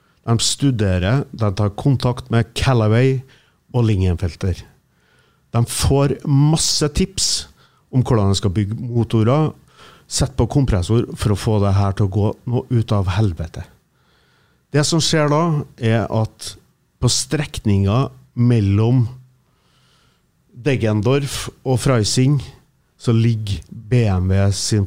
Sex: male